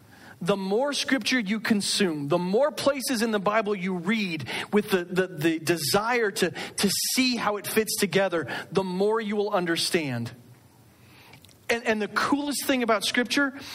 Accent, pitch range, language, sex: American, 150-220 Hz, English, male